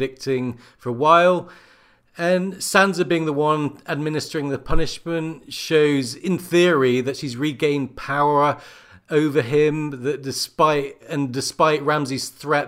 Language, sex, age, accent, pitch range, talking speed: English, male, 40-59, British, 130-180 Hz, 125 wpm